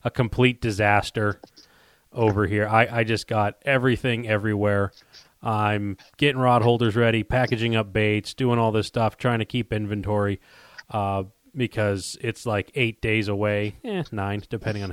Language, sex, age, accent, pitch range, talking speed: English, male, 30-49, American, 105-120 Hz, 155 wpm